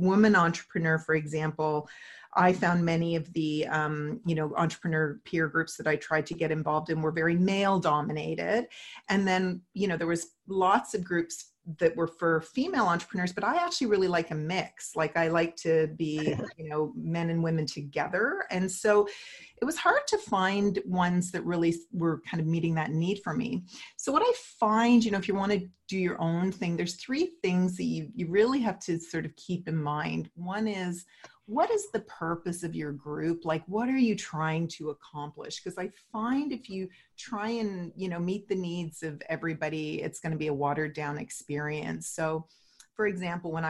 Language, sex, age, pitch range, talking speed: English, female, 40-59, 160-190 Hz, 200 wpm